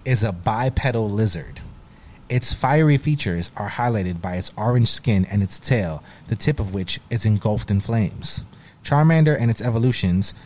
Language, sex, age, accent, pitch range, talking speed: English, male, 30-49, American, 105-130 Hz, 160 wpm